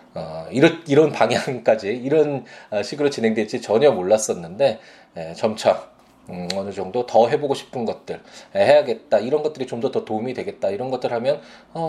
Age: 20-39